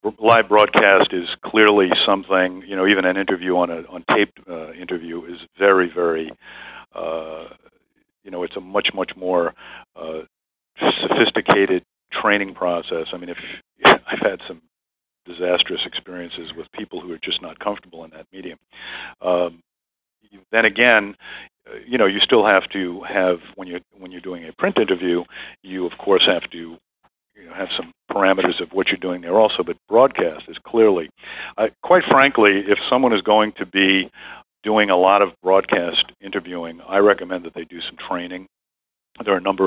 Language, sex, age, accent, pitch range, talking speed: English, male, 50-69, American, 90-100 Hz, 170 wpm